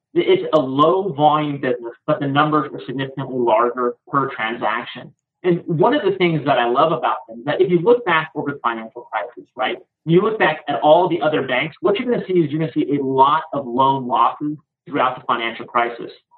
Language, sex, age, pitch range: English, male, 30-49, 130-165 Hz